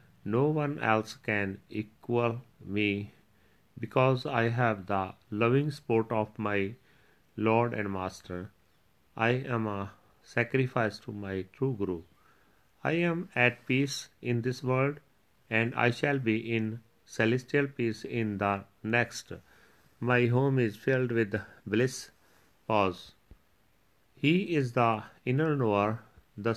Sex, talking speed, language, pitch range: male, 125 wpm, Punjabi, 100-125 Hz